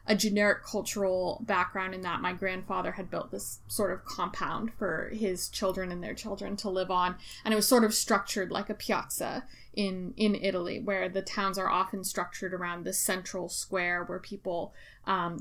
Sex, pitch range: female, 195-220 Hz